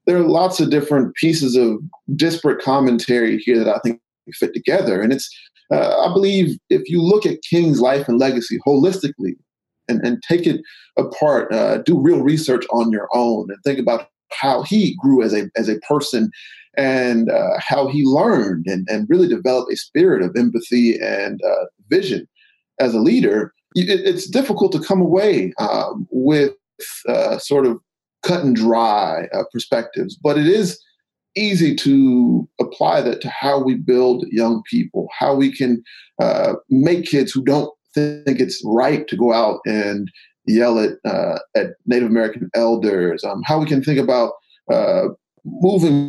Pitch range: 120-175 Hz